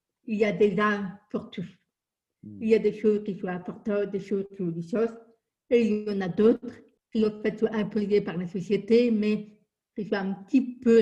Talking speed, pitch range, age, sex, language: 220 wpm, 205-235 Hz, 50-69, female, French